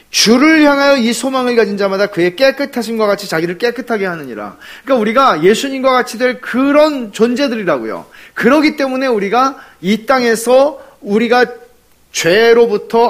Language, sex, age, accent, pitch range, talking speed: English, male, 40-59, Korean, 150-230 Hz, 125 wpm